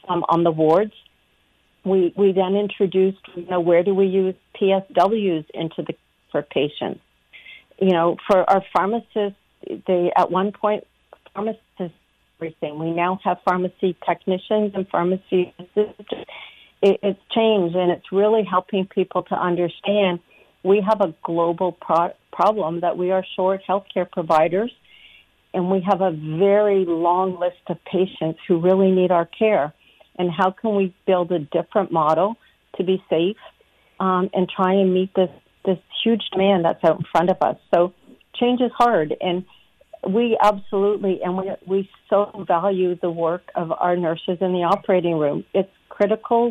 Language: English